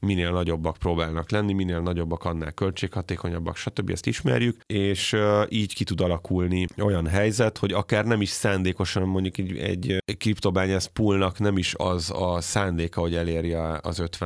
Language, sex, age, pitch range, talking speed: Hungarian, male, 30-49, 85-105 Hz, 145 wpm